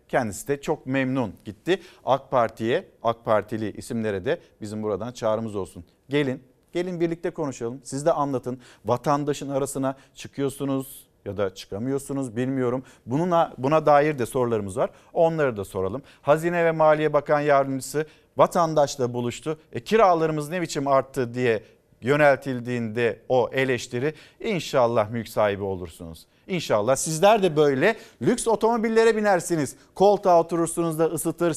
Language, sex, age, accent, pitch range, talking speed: Turkish, male, 50-69, native, 120-165 Hz, 130 wpm